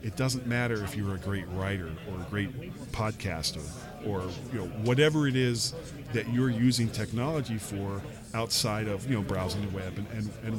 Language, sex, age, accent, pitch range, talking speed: English, male, 40-59, American, 115-150 Hz, 185 wpm